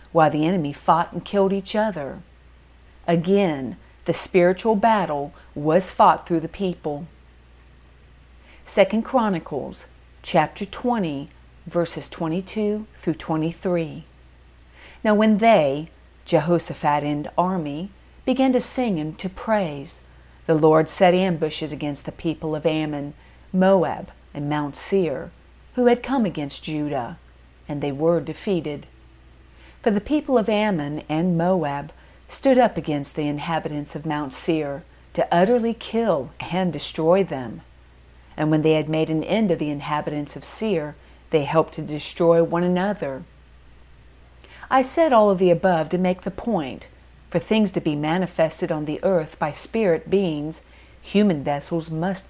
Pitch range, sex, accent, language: 145-185 Hz, female, American, English